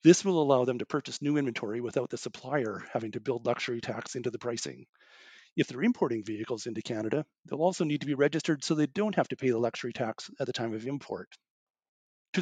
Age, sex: 40-59, male